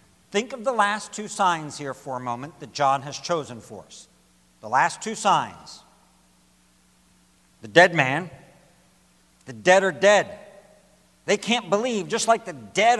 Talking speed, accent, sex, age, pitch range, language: 155 wpm, American, male, 60-79, 120-175 Hz, English